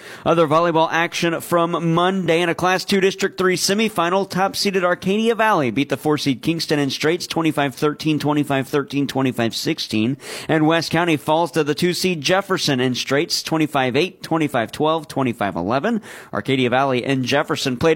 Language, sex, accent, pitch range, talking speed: English, male, American, 140-180 Hz, 140 wpm